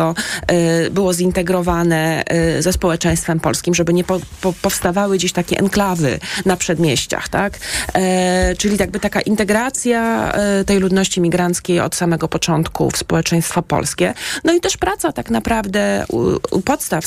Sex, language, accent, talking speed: female, Polish, native, 140 wpm